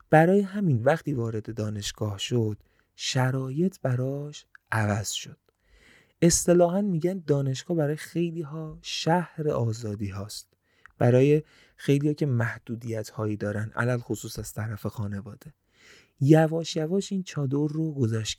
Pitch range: 115-160 Hz